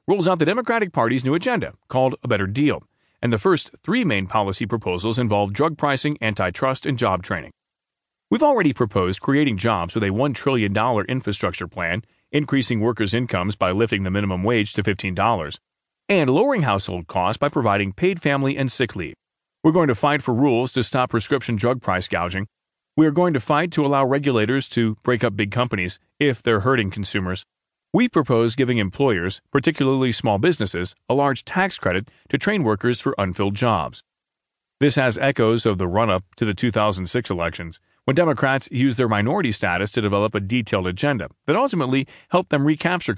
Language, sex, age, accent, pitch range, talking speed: English, male, 30-49, American, 100-135 Hz, 180 wpm